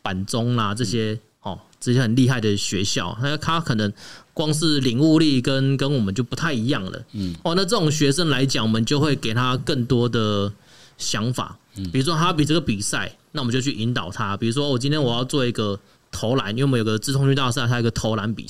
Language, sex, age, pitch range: Chinese, male, 20-39, 110-150 Hz